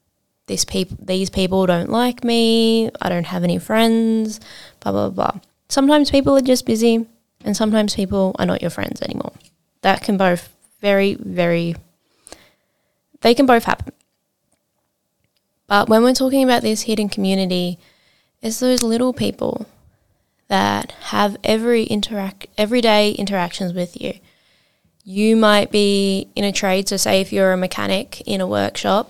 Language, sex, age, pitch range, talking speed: English, female, 10-29, 185-230 Hz, 150 wpm